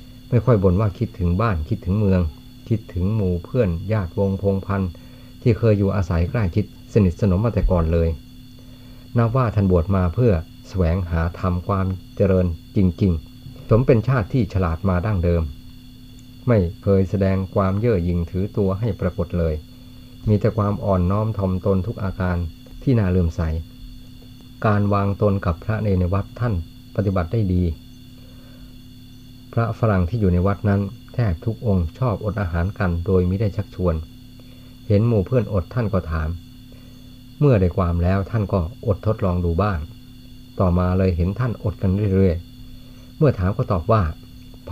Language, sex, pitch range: Thai, male, 90-125 Hz